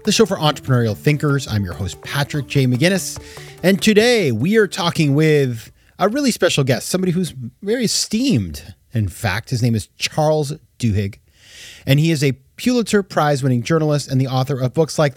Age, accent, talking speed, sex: 30-49, American, 180 wpm, male